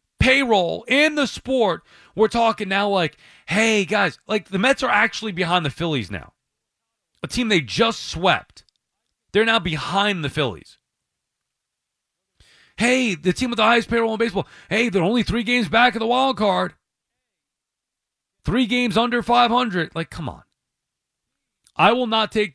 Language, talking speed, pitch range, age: English, 160 wpm, 165-225 Hz, 40-59